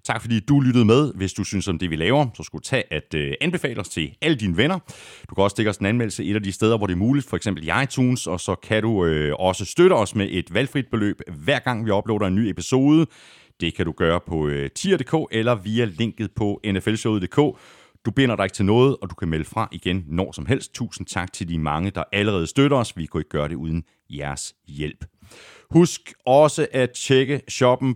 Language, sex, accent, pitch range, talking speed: Danish, male, native, 90-135 Hz, 225 wpm